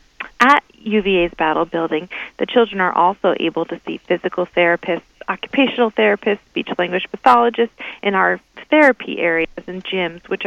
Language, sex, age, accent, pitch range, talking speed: English, female, 30-49, American, 170-210 Hz, 140 wpm